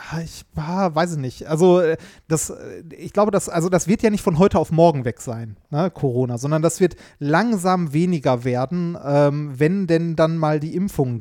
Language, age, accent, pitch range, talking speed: German, 30-49, German, 135-165 Hz, 195 wpm